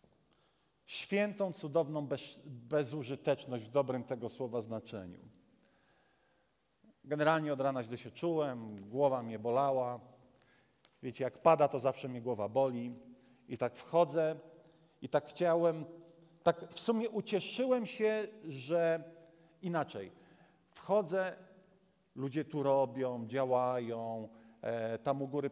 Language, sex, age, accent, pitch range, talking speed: Polish, male, 40-59, native, 130-165 Hz, 110 wpm